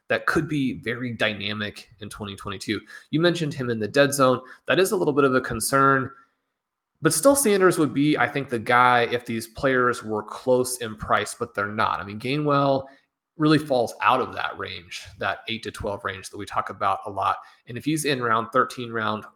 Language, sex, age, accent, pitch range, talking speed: English, male, 30-49, American, 110-135 Hz, 210 wpm